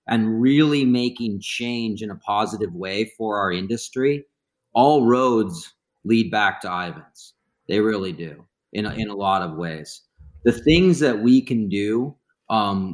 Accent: American